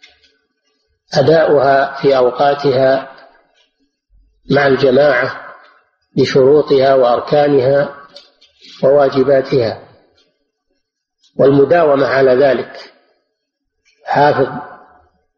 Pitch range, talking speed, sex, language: 115-160 Hz, 45 wpm, male, Arabic